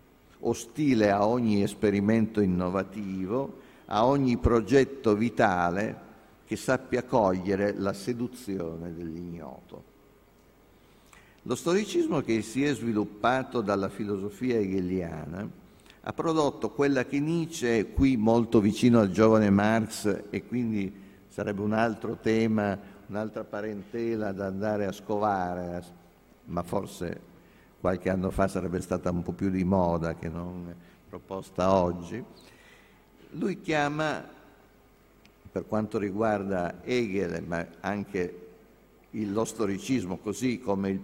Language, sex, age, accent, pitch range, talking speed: Italian, male, 50-69, native, 95-115 Hz, 110 wpm